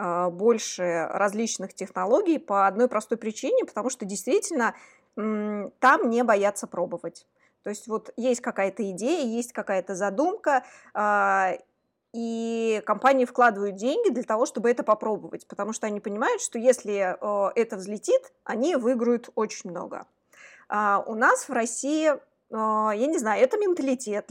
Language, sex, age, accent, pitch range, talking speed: Russian, female, 20-39, native, 205-255 Hz, 130 wpm